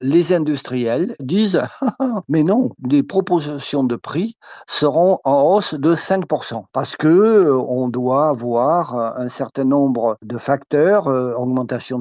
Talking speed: 125 wpm